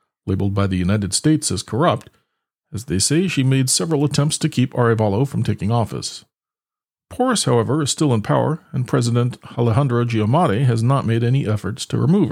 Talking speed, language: 180 wpm, English